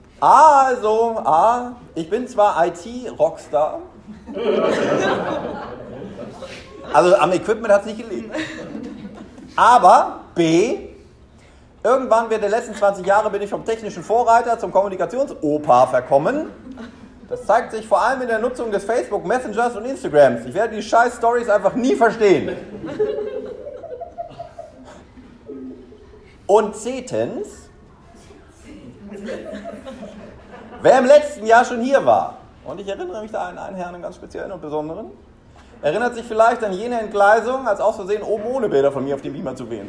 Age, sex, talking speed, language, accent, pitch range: 40-59, male, 135 wpm, German, German, 195-250 Hz